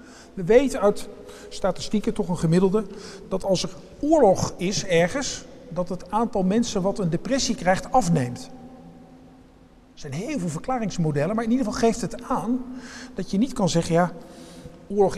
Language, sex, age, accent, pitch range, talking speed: Dutch, male, 50-69, Dutch, 170-225 Hz, 160 wpm